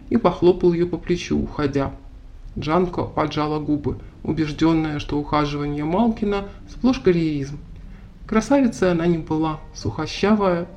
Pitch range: 150-180 Hz